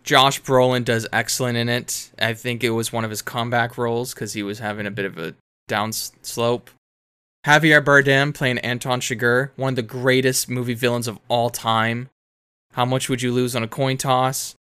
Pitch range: 110-130 Hz